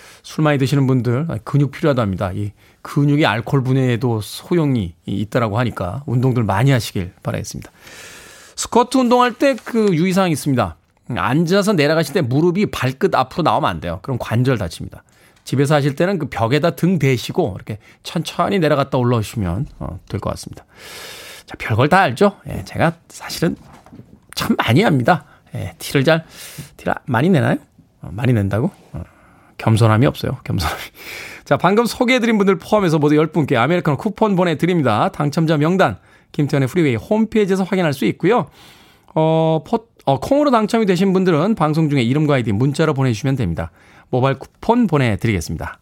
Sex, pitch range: male, 125-195 Hz